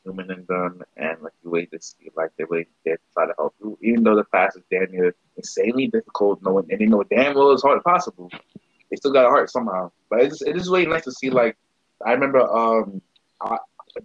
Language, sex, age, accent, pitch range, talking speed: English, male, 20-39, American, 95-130 Hz, 245 wpm